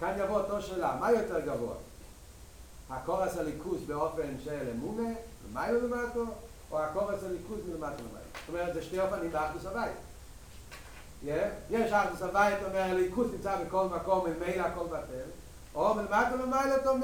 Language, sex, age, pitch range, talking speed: Hebrew, male, 40-59, 175-235 Hz, 140 wpm